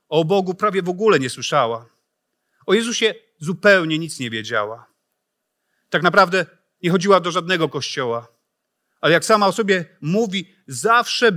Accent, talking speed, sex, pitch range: native, 145 wpm, male, 140-190 Hz